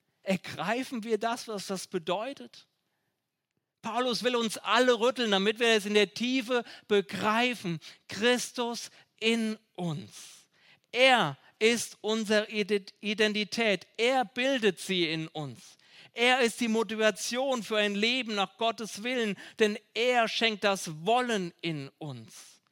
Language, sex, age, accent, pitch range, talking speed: German, male, 40-59, German, 185-235 Hz, 125 wpm